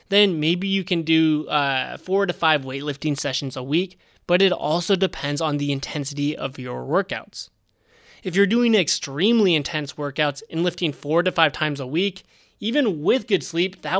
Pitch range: 145-185 Hz